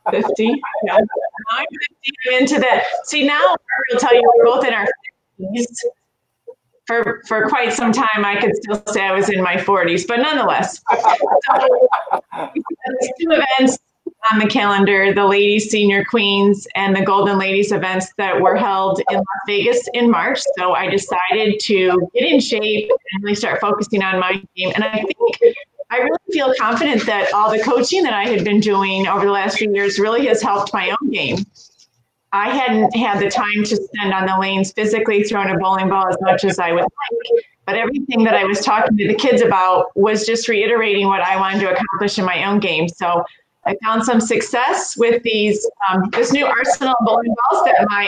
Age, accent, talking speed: 30-49, American, 200 wpm